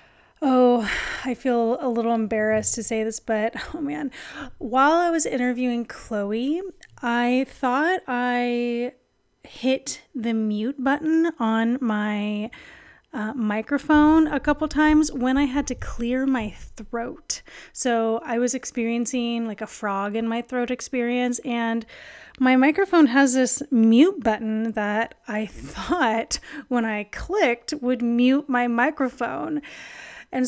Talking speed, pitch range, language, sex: 130 wpm, 225-280 Hz, English, female